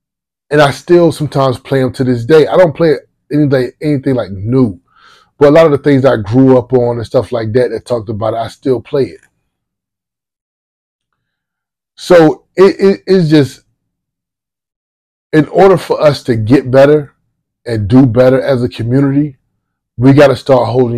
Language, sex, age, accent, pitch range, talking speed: English, male, 20-39, American, 115-140 Hz, 180 wpm